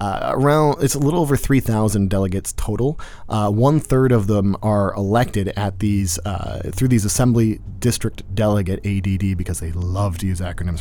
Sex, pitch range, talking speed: male, 100-120 Hz, 170 wpm